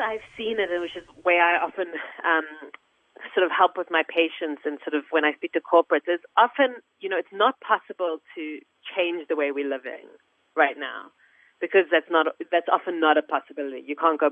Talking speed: 210 wpm